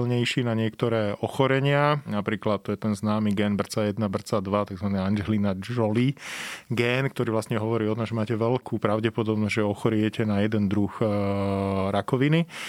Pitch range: 105-125 Hz